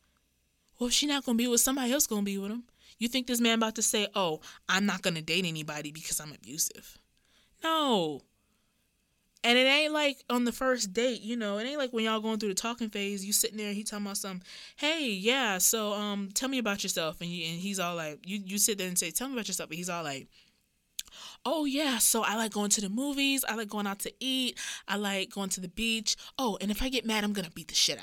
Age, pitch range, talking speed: 20-39, 190-235 Hz, 260 wpm